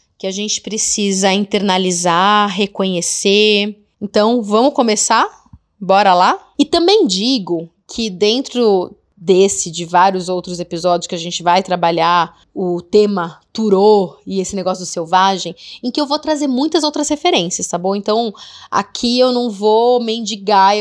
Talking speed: 145 wpm